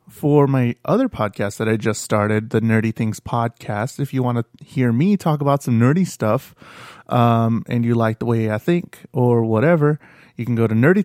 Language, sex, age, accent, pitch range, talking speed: English, male, 30-49, American, 120-155 Hz, 205 wpm